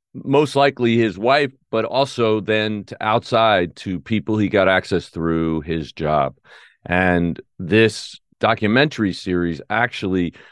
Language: English